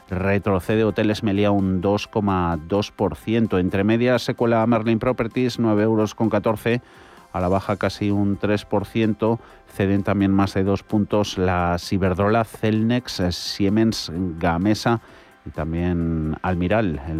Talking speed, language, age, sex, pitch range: 115 wpm, Spanish, 30-49, male, 90-110 Hz